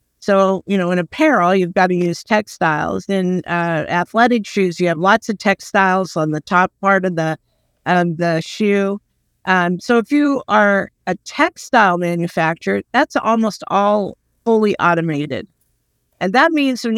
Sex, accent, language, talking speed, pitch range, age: female, American, English, 160 wpm, 175-225 Hz, 50-69